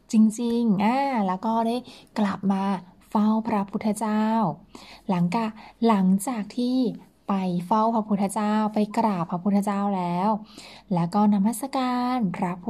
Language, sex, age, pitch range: Thai, female, 20-39, 185-225 Hz